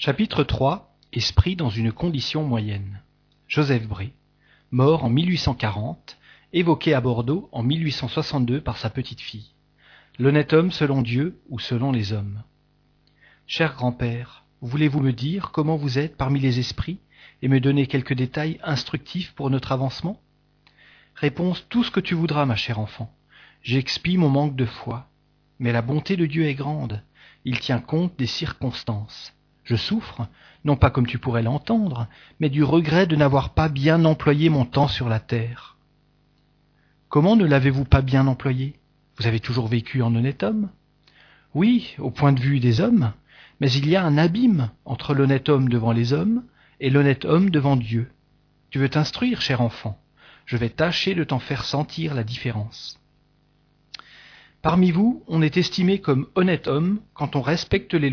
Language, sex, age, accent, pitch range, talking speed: French, male, 40-59, French, 125-155 Hz, 165 wpm